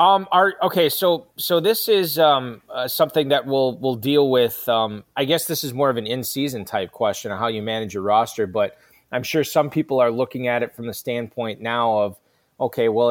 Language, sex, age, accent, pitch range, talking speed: English, male, 20-39, American, 115-140 Hz, 220 wpm